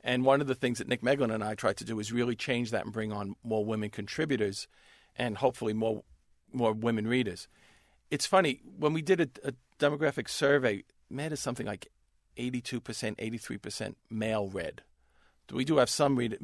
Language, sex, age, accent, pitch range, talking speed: English, male, 50-69, American, 110-130 Hz, 185 wpm